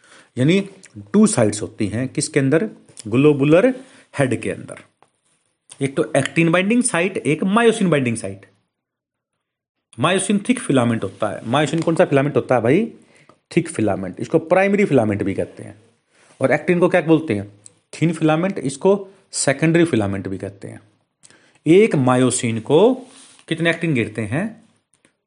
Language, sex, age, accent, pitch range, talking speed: Hindi, male, 40-59, native, 110-175 Hz, 145 wpm